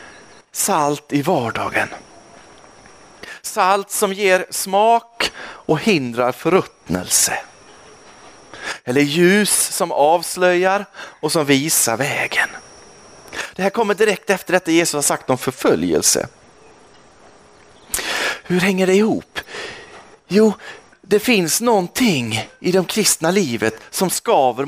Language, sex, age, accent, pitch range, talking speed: Swedish, male, 40-59, native, 145-200 Hz, 105 wpm